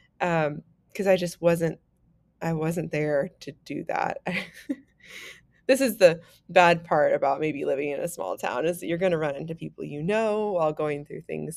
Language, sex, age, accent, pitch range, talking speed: English, female, 20-39, American, 155-200 Hz, 190 wpm